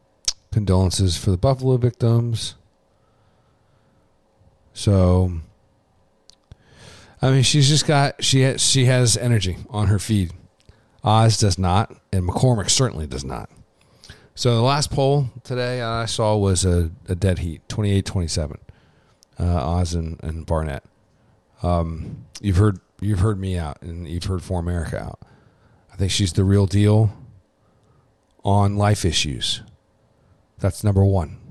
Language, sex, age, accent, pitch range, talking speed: English, male, 40-59, American, 90-110 Hz, 140 wpm